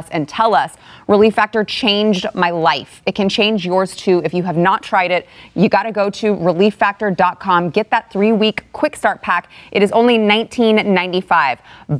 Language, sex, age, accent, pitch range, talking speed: English, female, 20-39, American, 170-220 Hz, 175 wpm